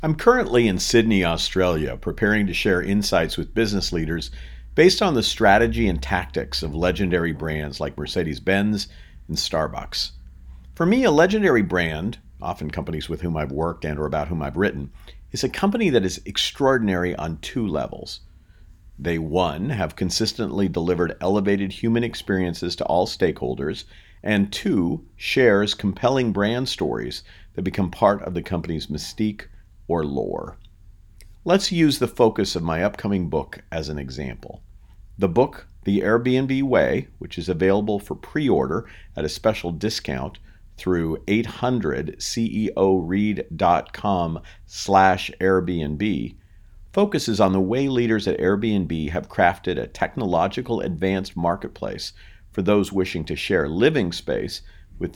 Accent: American